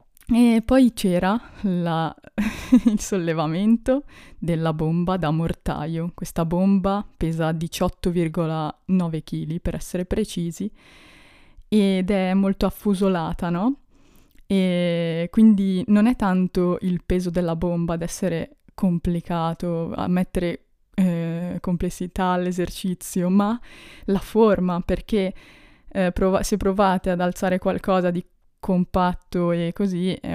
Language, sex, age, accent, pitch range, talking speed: Italian, female, 20-39, native, 175-205 Hz, 110 wpm